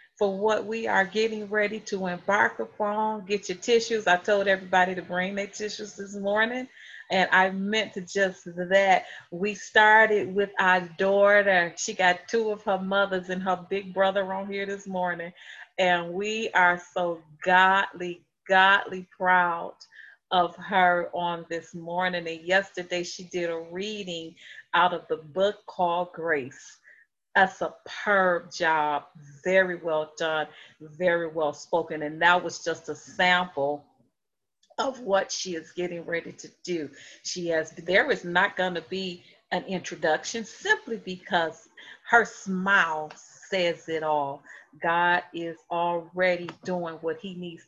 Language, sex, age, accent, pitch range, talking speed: English, female, 30-49, American, 170-195 Hz, 145 wpm